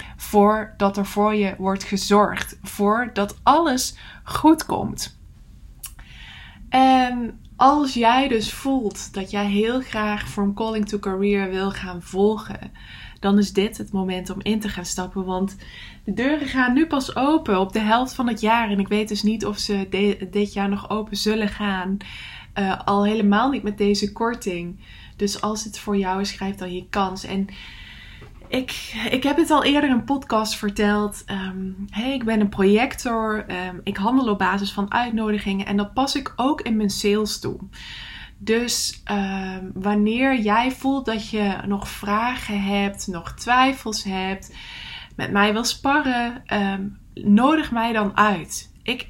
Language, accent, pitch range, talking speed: English, Dutch, 200-240 Hz, 165 wpm